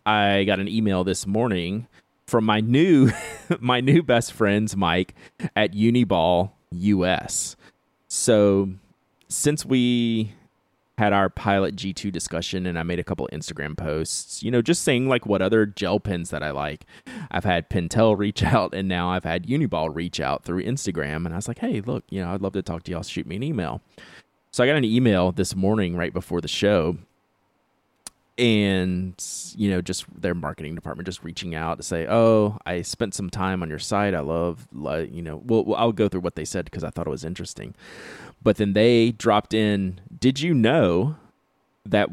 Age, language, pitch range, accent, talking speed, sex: 30-49, English, 85-110 Hz, American, 190 wpm, male